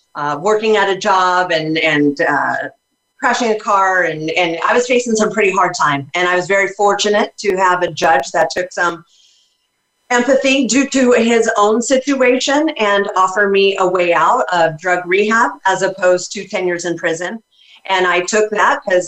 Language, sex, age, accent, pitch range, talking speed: English, female, 40-59, American, 180-215 Hz, 185 wpm